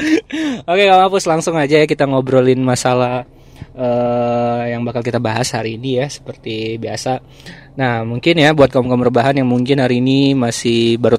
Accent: native